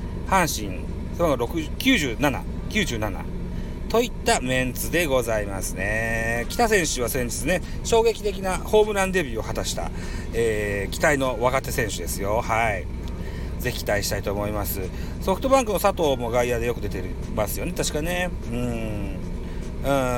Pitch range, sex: 90-140 Hz, male